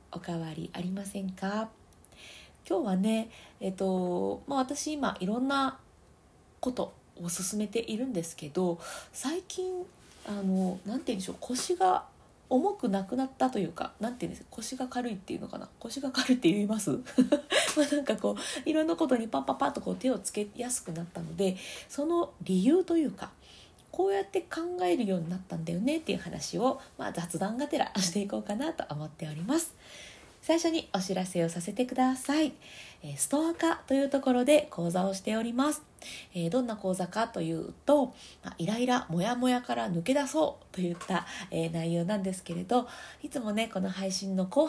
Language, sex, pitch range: Japanese, female, 185-280 Hz